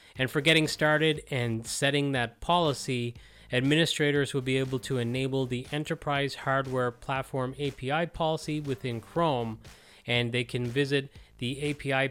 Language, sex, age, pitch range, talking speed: English, male, 30-49, 120-150 Hz, 140 wpm